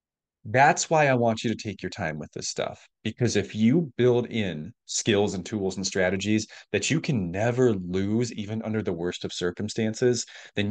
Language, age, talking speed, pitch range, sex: English, 30-49, 190 wpm, 90-115 Hz, male